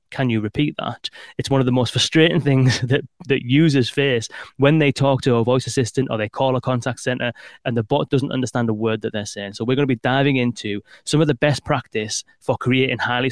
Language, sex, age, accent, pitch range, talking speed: English, male, 20-39, British, 115-140 Hz, 240 wpm